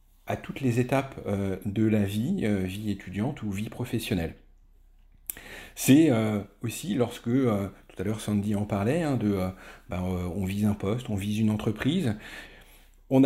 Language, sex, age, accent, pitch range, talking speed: French, male, 40-59, French, 100-120 Hz, 140 wpm